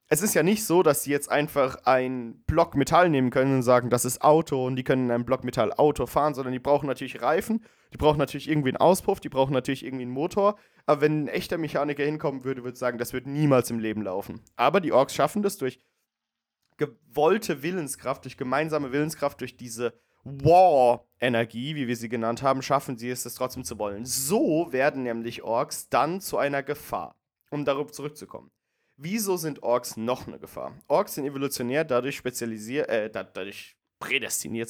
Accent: German